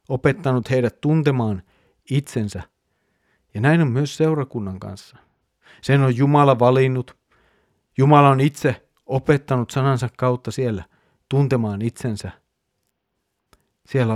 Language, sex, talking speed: Finnish, male, 100 wpm